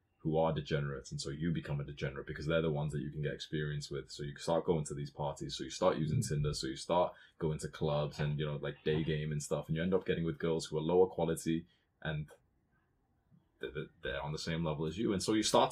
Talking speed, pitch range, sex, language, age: 260 wpm, 75-95 Hz, male, English, 20-39